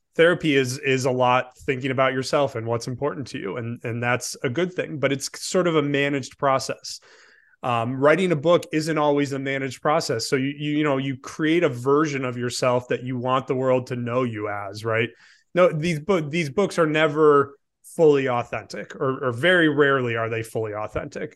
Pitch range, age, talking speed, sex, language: 125-155 Hz, 30-49, 205 wpm, male, English